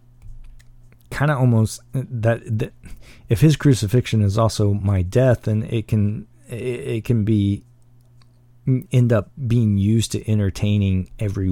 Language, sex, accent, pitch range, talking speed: English, male, American, 100-120 Hz, 130 wpm